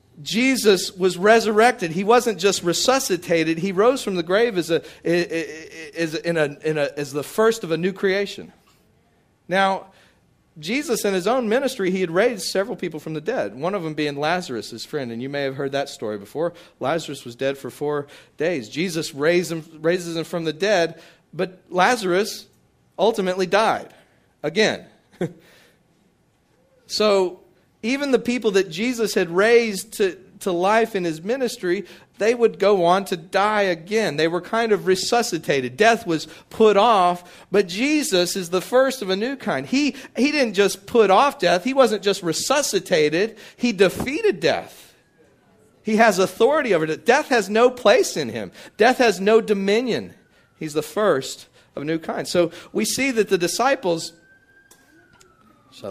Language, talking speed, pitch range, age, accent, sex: English, 165 wpm, 170-225 Hz, 40-59, American, male